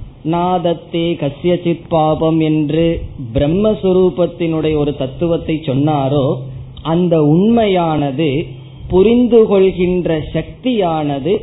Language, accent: Tamil, native